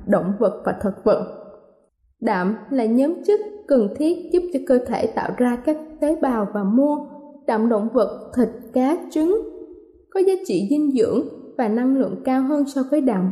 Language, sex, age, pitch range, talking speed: Vietnamese, female, 20-39, 235-300 Hz, 185 wpm